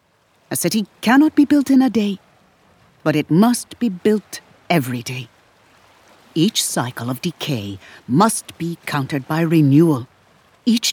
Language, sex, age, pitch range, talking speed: English, female, 60-79, 150-230 Hz, 135 wpm